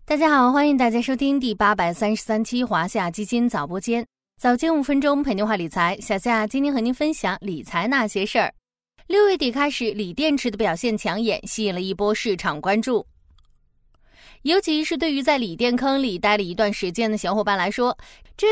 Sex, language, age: female, Chinese, 20-39